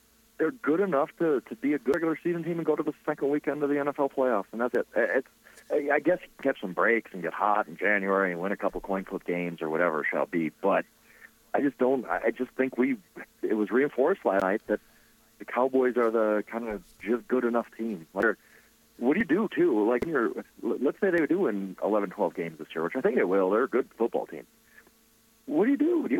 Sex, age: male, 40-59